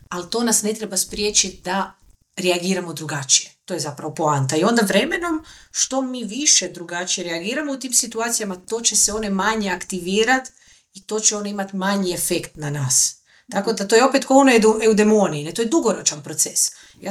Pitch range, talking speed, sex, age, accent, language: 185-240 Hz, 190 wpm, female, 30-49, native, Croatian